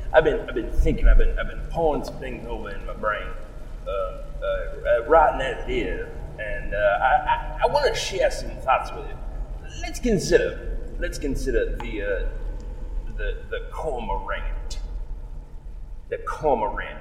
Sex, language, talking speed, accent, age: male, English, 150 wpm, American, 30-49